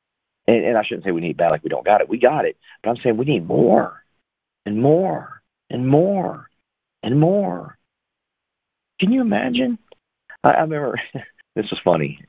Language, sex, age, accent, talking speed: English, male, 40-59, American, 185 wpm